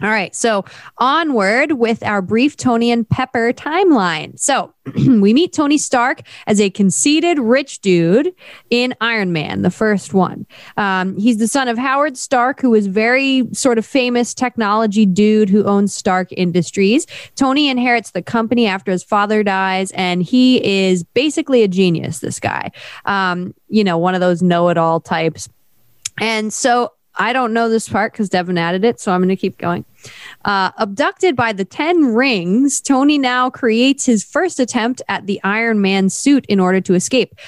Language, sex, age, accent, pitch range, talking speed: English, female, 20-39, American, 185-250 Hz, 175 wpm